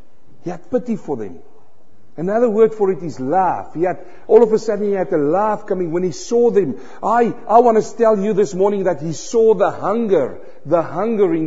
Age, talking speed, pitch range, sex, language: 50-69, 210 wpm, 140-205 Hz, male, English